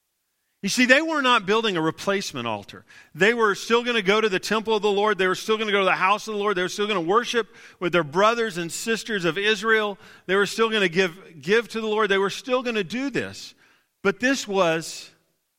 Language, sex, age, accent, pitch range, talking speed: English, male, 40-59, American, 165-225 Hz, 255 wpm